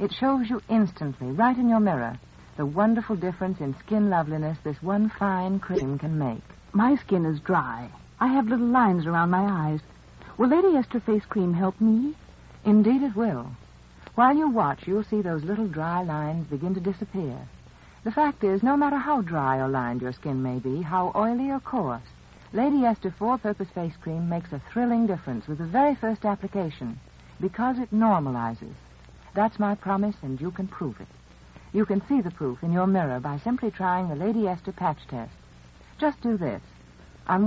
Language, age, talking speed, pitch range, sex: English, 60-79, 185 wpm, 140-215 Hz, female